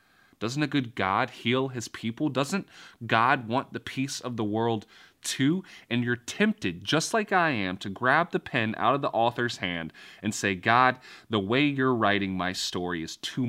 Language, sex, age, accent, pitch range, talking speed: English, male, 30-49, American, 95-125 Hz, 190 wpm